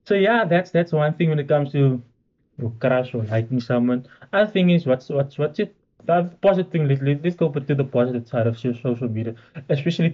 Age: 20-39